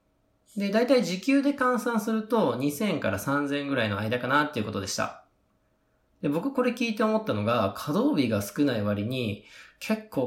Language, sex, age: Japanese, male, 20-39